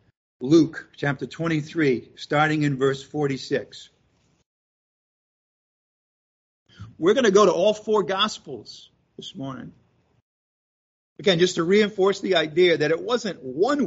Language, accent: English, American